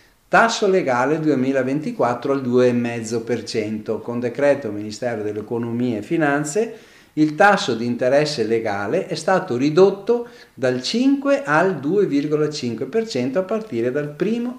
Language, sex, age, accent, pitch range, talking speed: Italian, male, 50-69, native, 115-175 Hz, 115 wpm